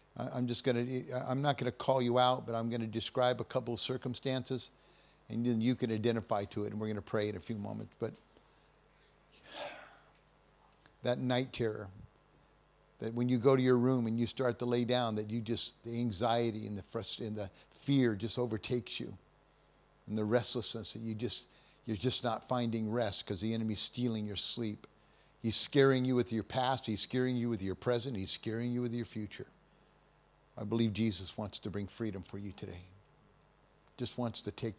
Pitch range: 105-125 Hz